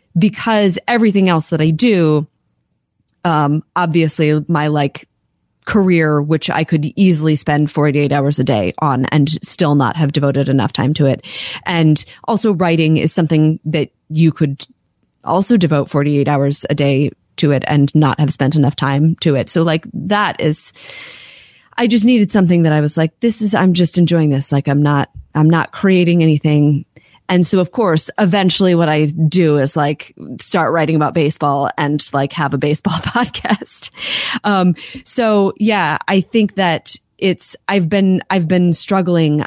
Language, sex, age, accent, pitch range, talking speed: English, female, 30-49, American, 145-180 Hz, 170 wpm